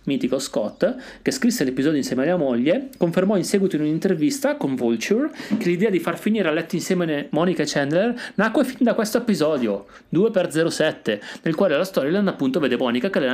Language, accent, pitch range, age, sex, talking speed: Italian, native, 120-185 Hz, 30-49, male, 185 wpm